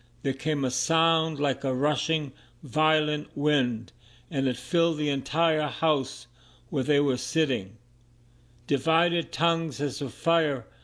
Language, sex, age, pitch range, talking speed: English, male, 60-79, 120-155 Hz, 135 wpm